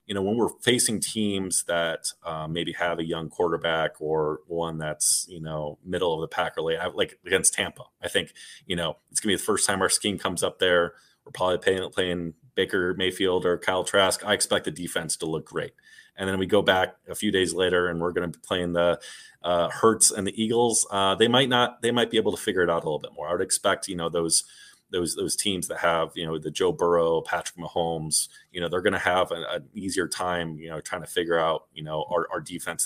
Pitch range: 85-100 Hz